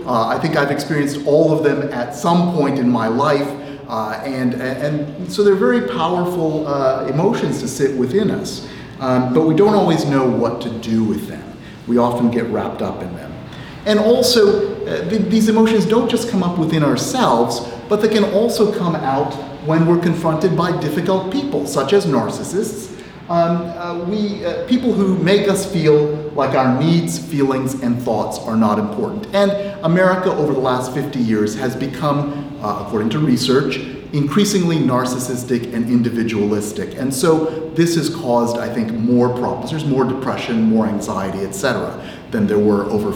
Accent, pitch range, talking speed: American, 125-185 Hz, 175 wpm